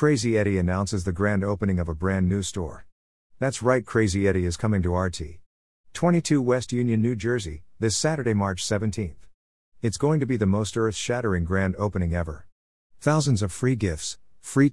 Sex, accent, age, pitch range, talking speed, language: male, American, 50-69, 85-115 Hz, 175 wpm, English